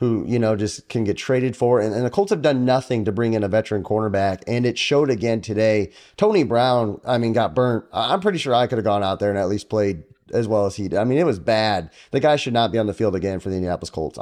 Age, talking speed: 30-49, 285 wpm